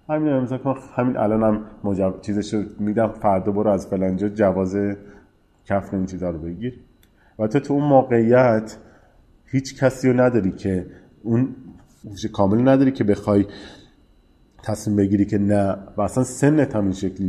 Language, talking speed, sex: Persian, 155 wpm, male